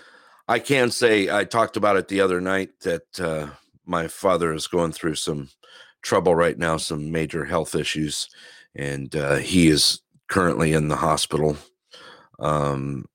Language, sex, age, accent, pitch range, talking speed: English, male, 50-69, American, 70-90 Hz, 155 wpm